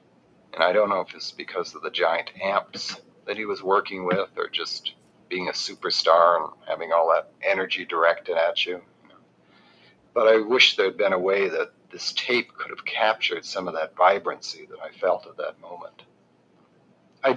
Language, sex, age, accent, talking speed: English, male, 40-59, American, 185 wpm